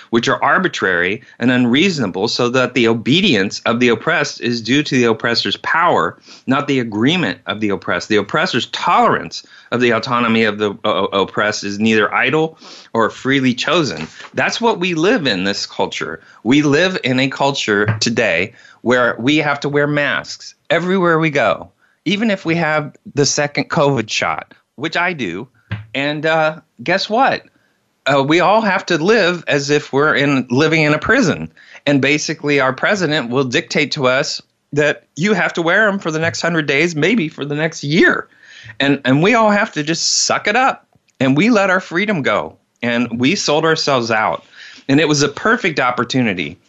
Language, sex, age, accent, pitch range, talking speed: English, male, 30-49, American, 120-160 Hz, 180 wpm